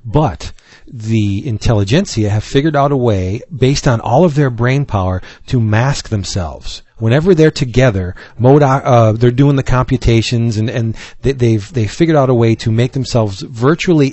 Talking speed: 170 wpm